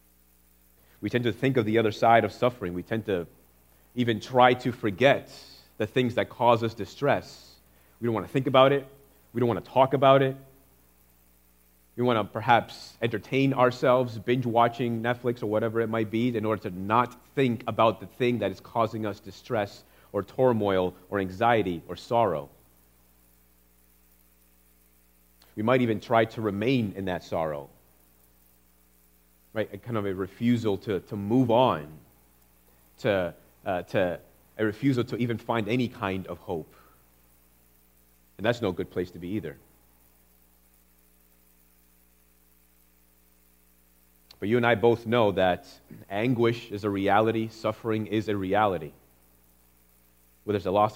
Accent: American